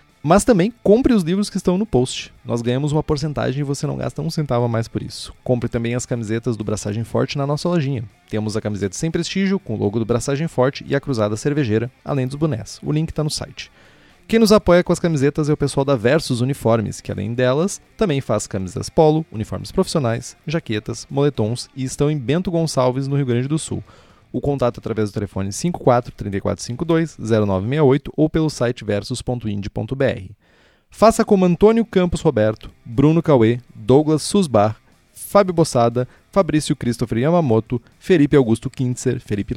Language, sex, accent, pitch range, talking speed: Portuguese, male, Brazilian, 115-155 Hz, 175 wpm